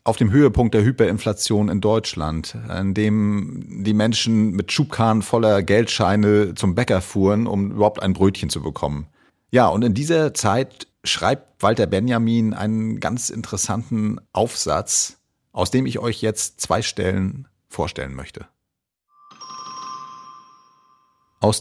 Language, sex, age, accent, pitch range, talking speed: German, male, 40-59, German, 95-120 Hz, 130 wpm